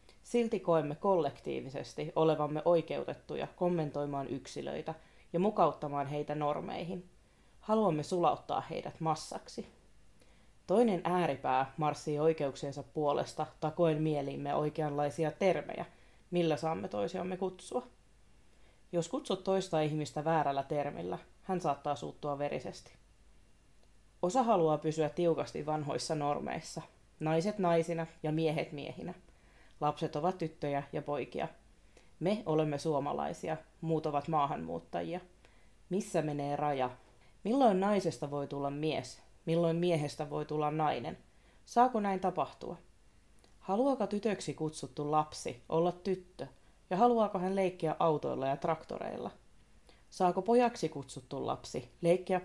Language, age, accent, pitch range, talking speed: Finnish, 30-49, native, 150-185 Hz, 110 wpm